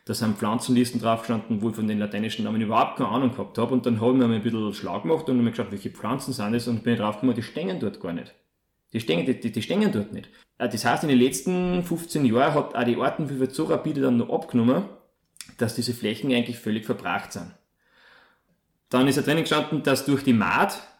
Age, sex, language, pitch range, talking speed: 30-49, male, German, 110-130 Hz, 230 wpm